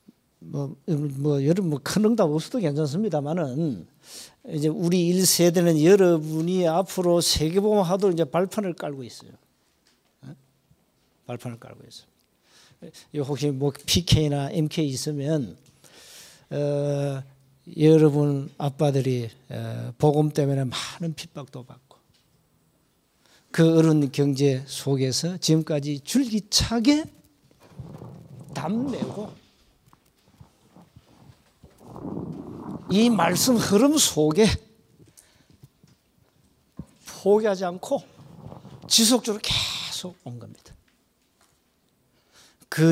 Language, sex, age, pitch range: Korean, male, 50-69, 140-180 Hz